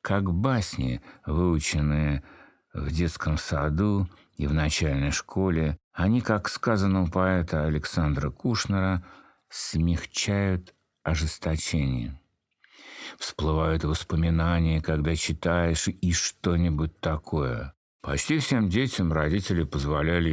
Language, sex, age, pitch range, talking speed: Russian, male, 60-79, 75-95 Hz, 90 wpm